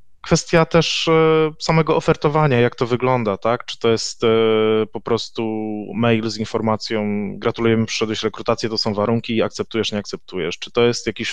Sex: male